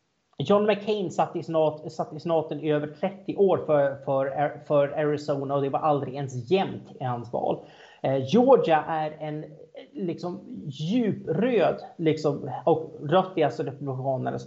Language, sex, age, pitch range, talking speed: Swedish, male, 30-49, 150-200 Hz, 135 wpm